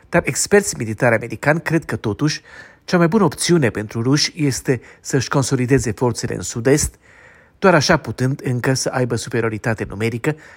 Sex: male